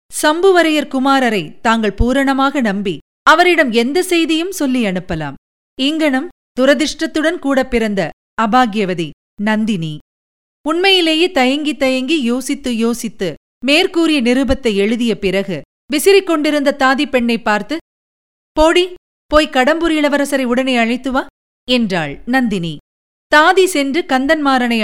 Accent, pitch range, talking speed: native, 210-300 Hz, 100 wpm